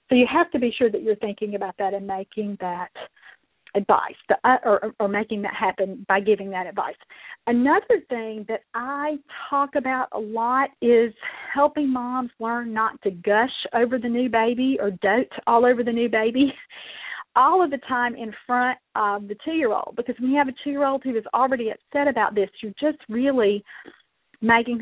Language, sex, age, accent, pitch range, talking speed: English, female, 40-59, American, 215-275 Hz, 180 wpm